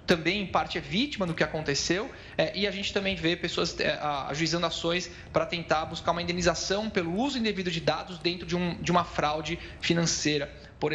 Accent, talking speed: Brazilian, 180 wpm